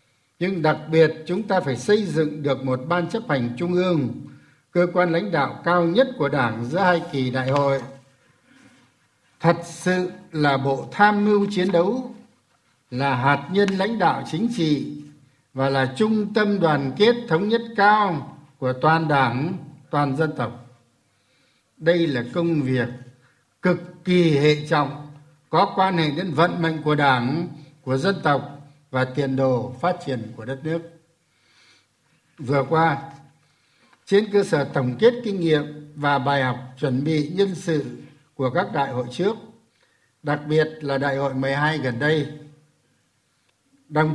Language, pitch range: Vietnamese, 135-180 Hz